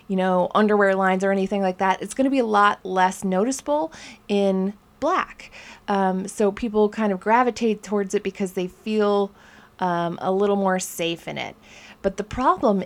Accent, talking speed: American, 180 wpm